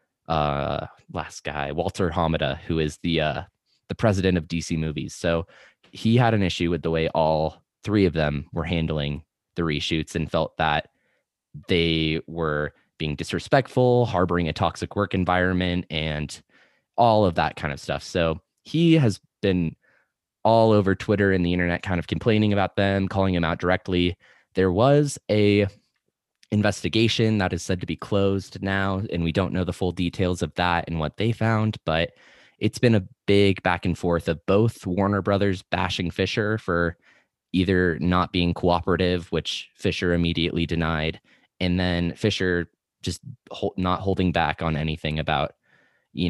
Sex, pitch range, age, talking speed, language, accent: male, 80-100 Hz, 20-39, 165 wpm, English, American